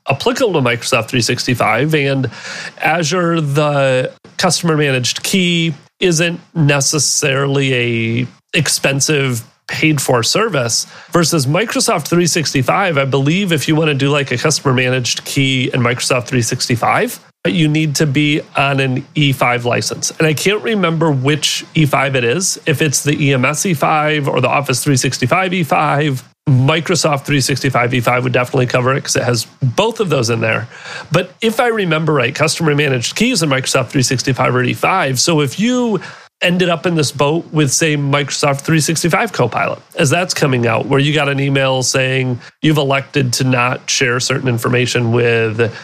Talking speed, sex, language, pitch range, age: 155 wpm, male, English, 130-160 Hz, 30-49